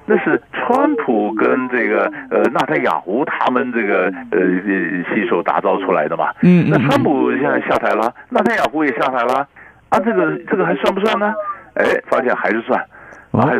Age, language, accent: 60-79, Chinese, native